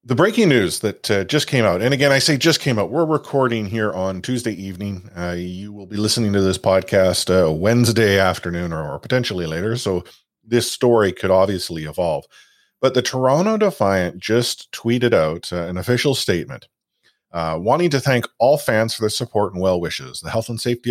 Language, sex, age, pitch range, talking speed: English, male, 40-59, 95-125 Hz, 200 wpm